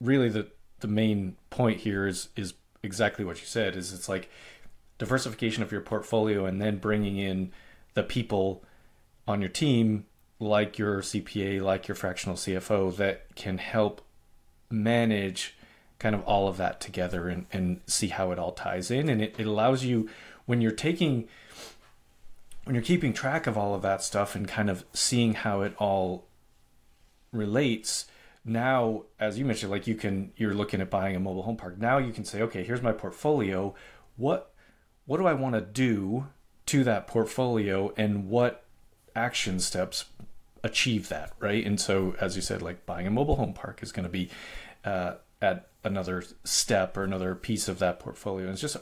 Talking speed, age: 175 wpm, 30-49